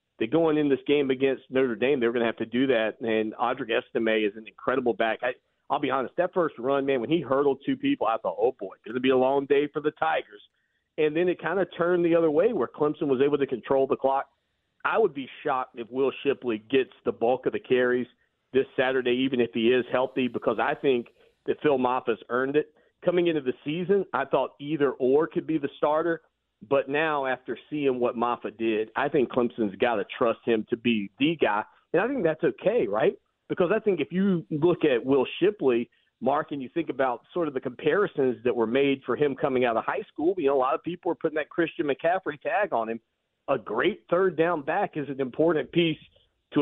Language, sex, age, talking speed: English, male, 40-59, 235 wpm